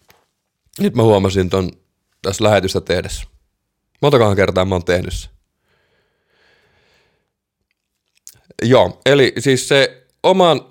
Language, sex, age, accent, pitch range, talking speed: Finnish, male, 30-49, native, 95-130 Hz, 95 wpm